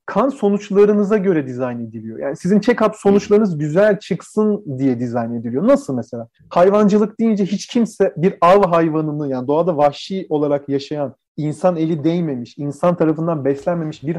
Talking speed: 150 wpm